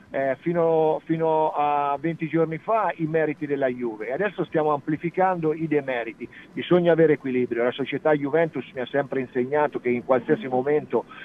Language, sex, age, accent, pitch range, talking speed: Italian, male, 50-69, native, 125-160 Hz, 165 wpm